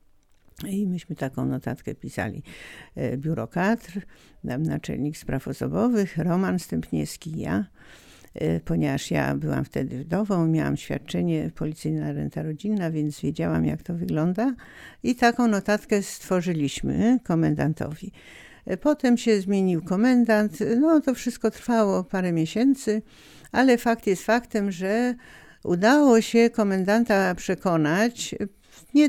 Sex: female